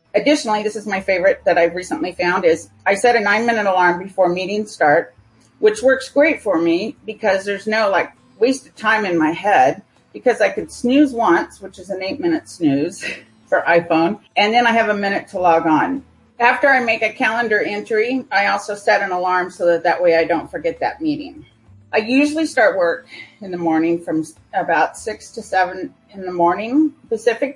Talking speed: 200 wpm